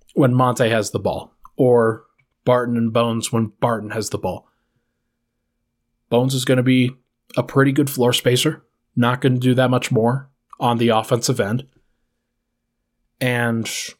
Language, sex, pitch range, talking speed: English, male, 120-135 Hz, 155 wpm